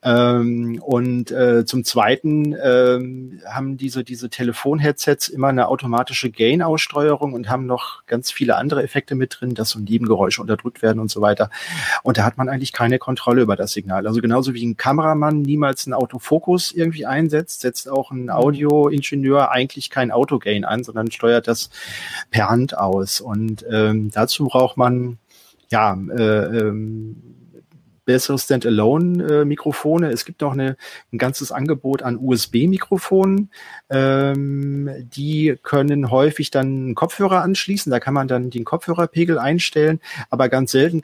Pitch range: 120-145 Hz